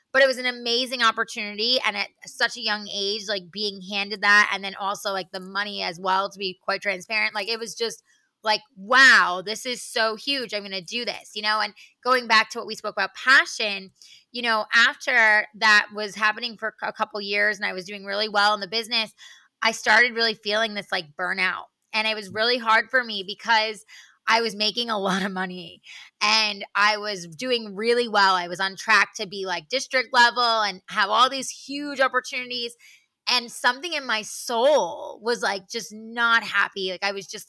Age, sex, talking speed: 20-39, female, 210 wpm